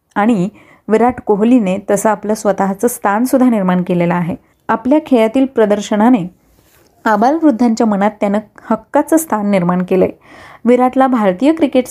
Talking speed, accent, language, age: 120 wpm, native, Marathi, 30-49